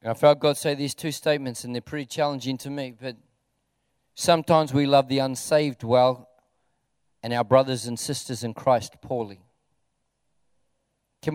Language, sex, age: English, male, 40-59